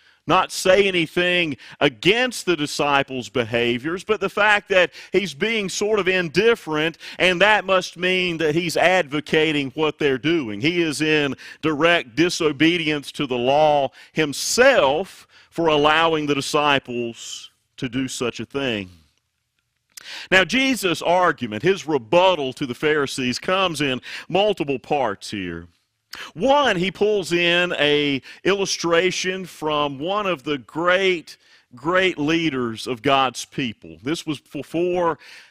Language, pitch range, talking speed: English, 135-180 Hz, 130 wpm